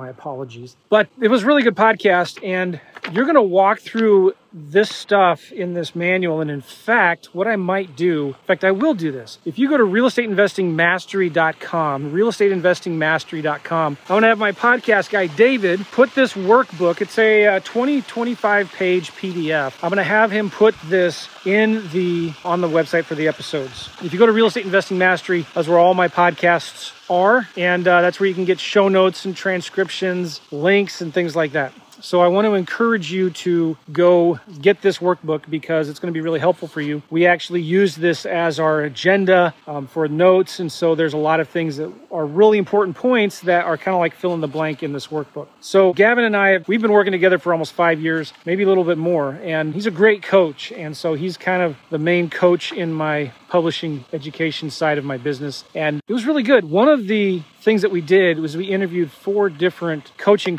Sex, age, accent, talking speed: male, 40-59, American, 210 wpm